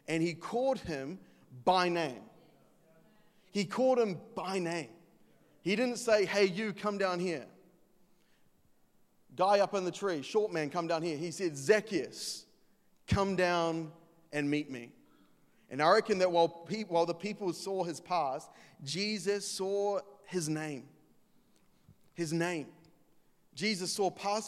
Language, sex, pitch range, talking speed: English, male, 150-185 Hz, 140 wpm